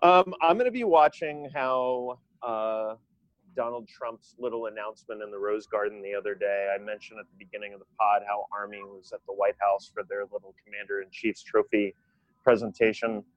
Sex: male